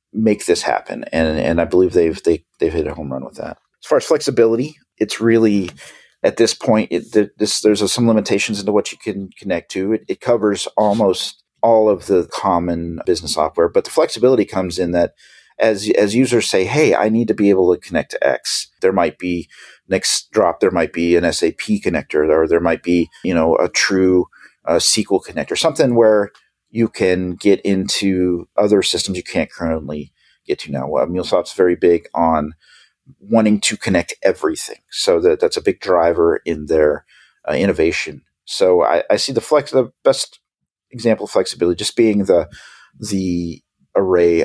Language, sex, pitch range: English, male, 85-115 Hz